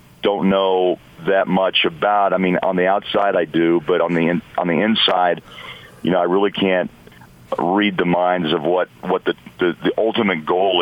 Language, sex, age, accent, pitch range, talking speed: English, male, 50-69, American, 80-95 Hz, 185 wpm